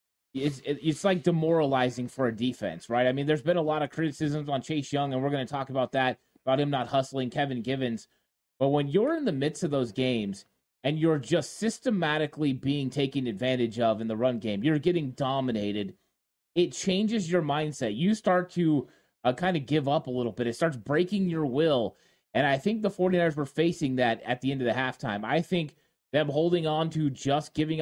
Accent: American